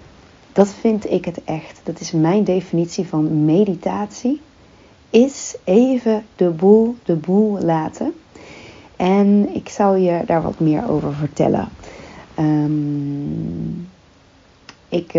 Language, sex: Dutch, female